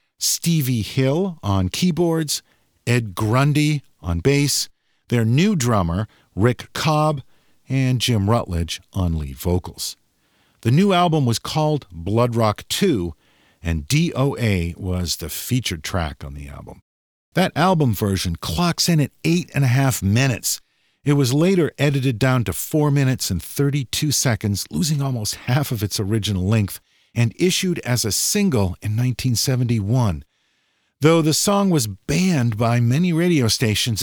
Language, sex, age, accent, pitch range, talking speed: English, male, 50-69, American, 100-150 Hz, 145 wpm